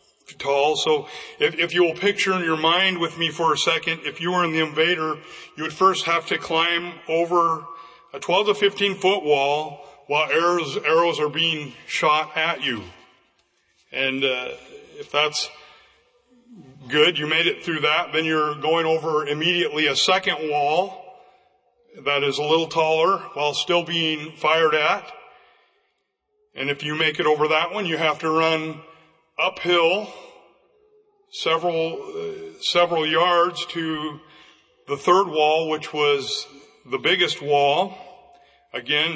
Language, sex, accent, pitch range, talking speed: English, male, American, 150-185 Hz, 150 wpm